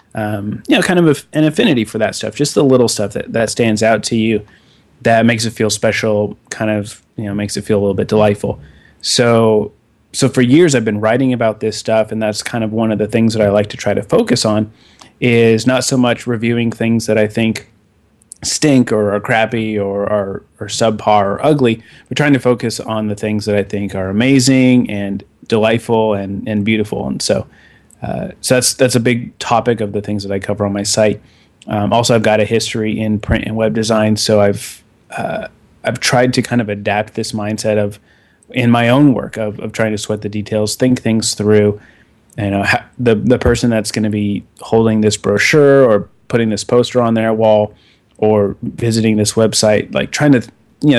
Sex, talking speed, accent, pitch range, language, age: male, 215 wpm, American, 105-120 Hz, English, 30-49